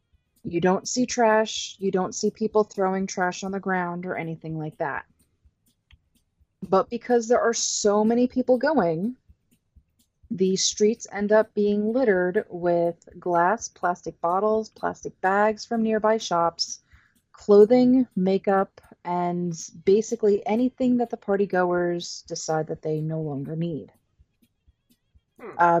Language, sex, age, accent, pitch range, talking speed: English, female, 30-49, American, 170-215 Hz, 130 wpm